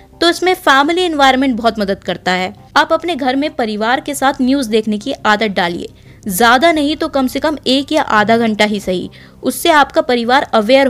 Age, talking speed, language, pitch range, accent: 20-39, 185 wpm, Hindi, 215-295 Hz, native